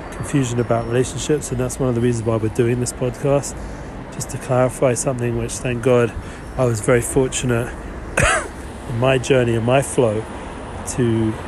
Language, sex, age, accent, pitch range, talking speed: English, male, 30-49, British, 110-130 Hz, 165 wpm